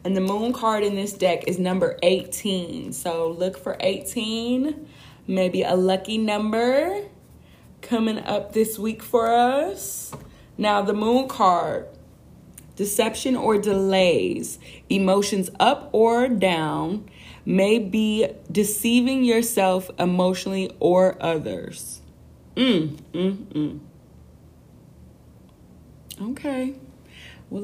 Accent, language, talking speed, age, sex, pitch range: American, English, 100 wpm, 20-39, female, 185-240 Hz